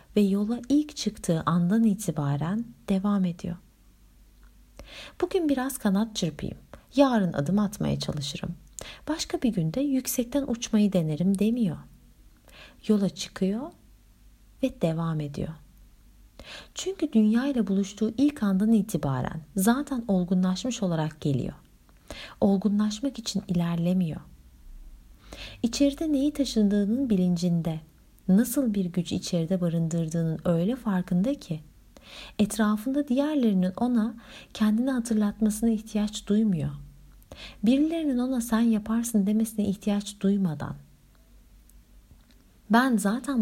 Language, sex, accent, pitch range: Turkish, female, native, 170-235 Hz